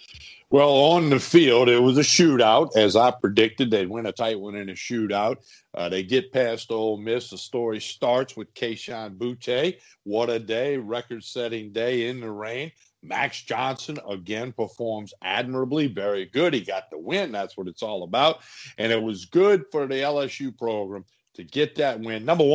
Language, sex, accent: English, male, American